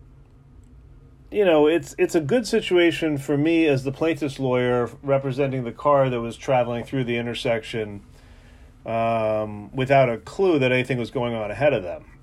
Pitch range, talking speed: 120-145 Hz, 165 wpm